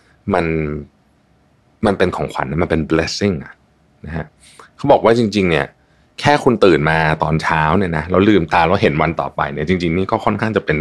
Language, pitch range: Thai, 80-115 Hz